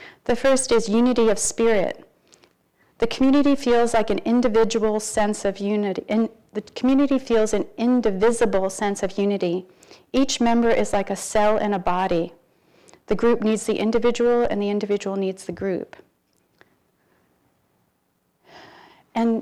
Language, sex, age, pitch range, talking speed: English, female, 40-59, 195-235 Hz, 135 wpm